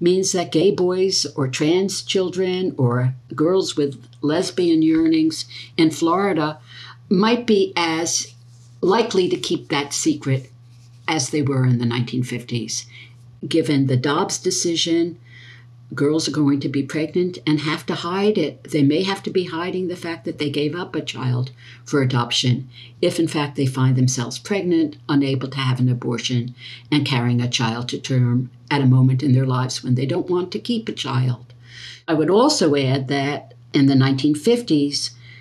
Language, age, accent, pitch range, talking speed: English, 60-79, American, 125-155 Hz, 170 wpm